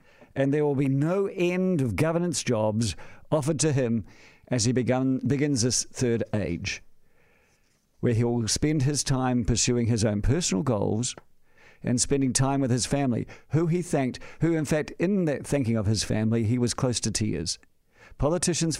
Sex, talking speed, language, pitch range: male, 170 wpm, English, 115-150 Hz